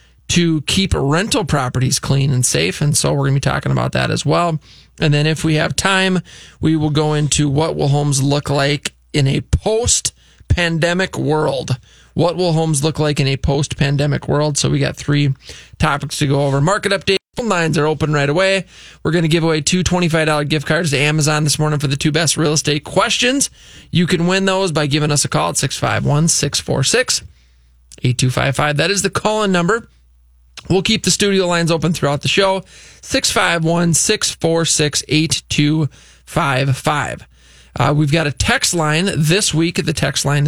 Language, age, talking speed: English, 20-39, 175 wpm